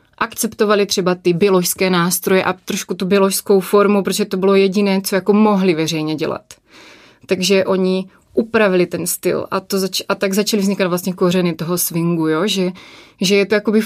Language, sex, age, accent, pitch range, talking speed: Czech, female, 20-39, native, 180-205 Hz, 180 wpm